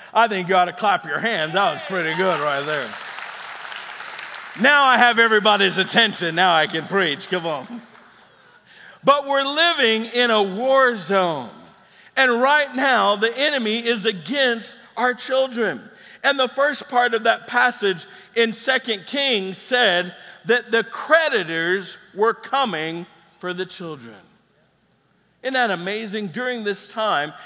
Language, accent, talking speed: English, American, 145 wpm